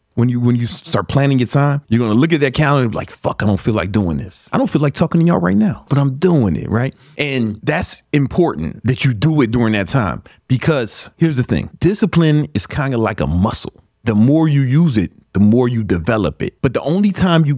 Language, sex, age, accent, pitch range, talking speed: English, male, 30-49, American, 110-150 Hz, 255 wpm